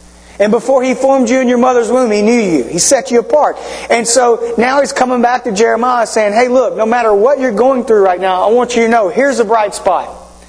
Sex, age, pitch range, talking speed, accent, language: male, 40-59, 200-255 Hz, 250 wpm, American, English